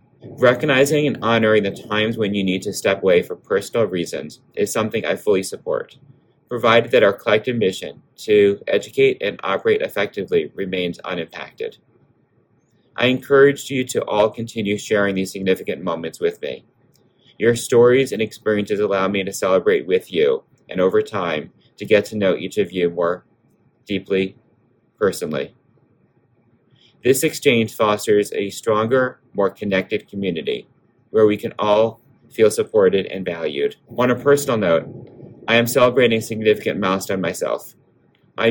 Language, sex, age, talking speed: English, male, 30-49, 145 wpm